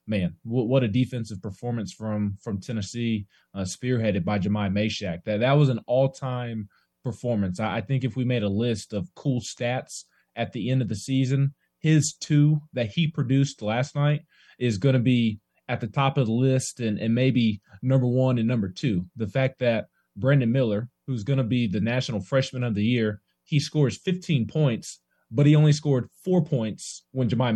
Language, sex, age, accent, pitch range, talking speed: English, male, 20-39, American, 110-135 Hz, 190 wpm